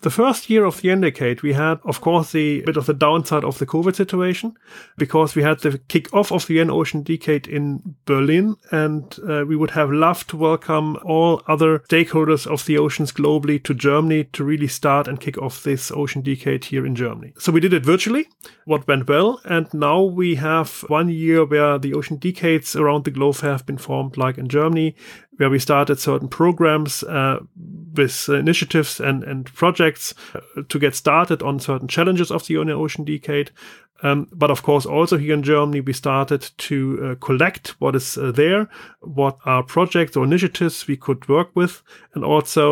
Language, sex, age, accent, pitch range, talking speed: English, male, 30-49, German, 140-160 Hz, 190 wpm